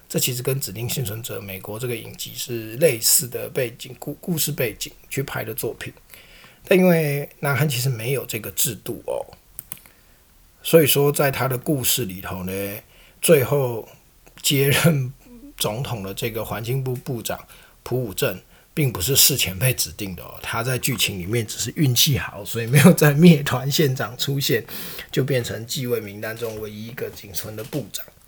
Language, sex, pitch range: Chinese, male, 115-145 Hz